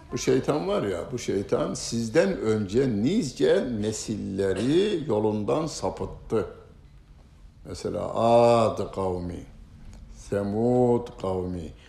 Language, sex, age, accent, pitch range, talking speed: Turkish, male, 60-79, native, 95-115 Hz, 85 wpm